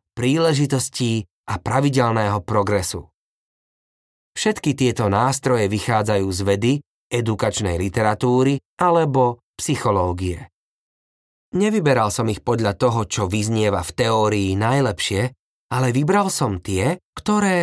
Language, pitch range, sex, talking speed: Slovak, 105-140 Hz, male, 100 wpm